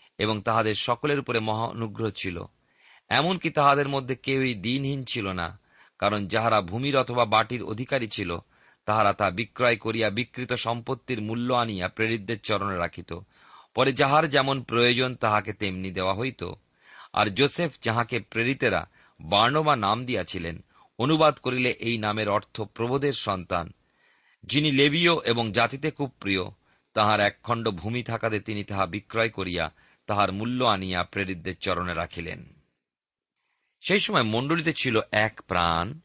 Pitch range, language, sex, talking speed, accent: 100-130 Hz, Bengali, male, 90 wpm, native